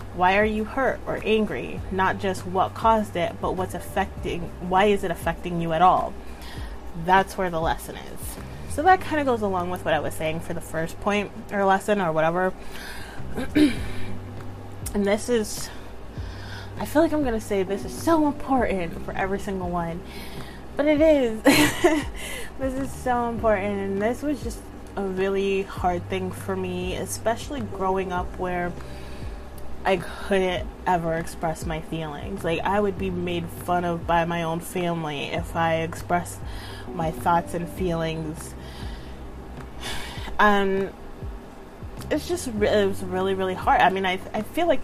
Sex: female